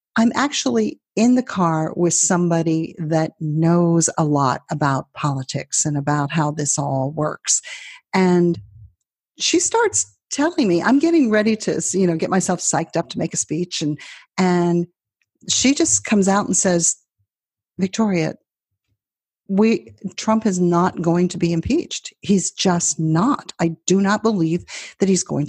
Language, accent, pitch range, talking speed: English, American, 165-225 Hz, 155 wpm